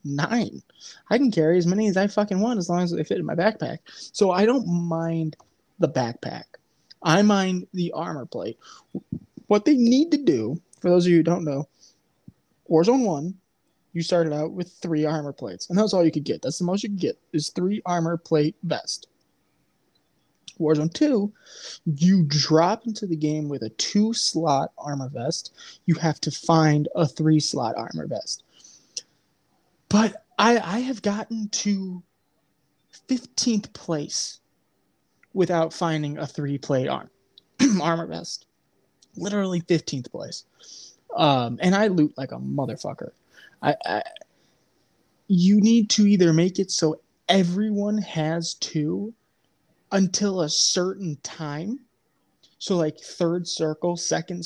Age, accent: 20-39, American